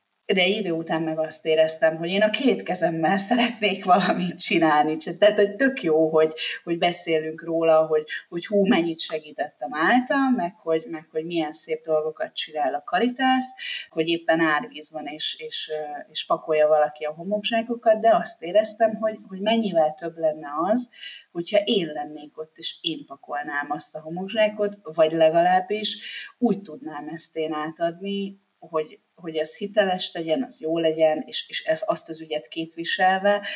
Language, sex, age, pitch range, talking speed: Hungarian, female, 30-49, 155-205 Hz, 160 wpm